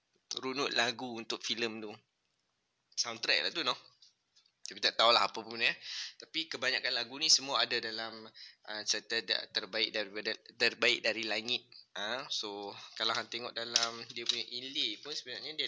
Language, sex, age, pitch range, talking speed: Malay, male, 20-39, 110-120 Hz, 160 wpm